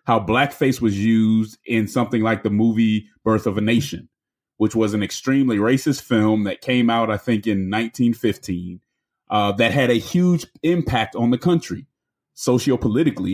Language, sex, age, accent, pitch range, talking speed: English, male, 30-49, American, 105-130 Hz, 160 wpm